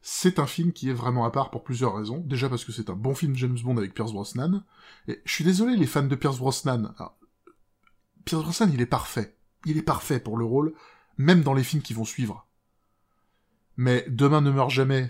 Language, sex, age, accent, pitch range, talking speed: French, male, 20-39, French, 115-160 Hz, 225 wpm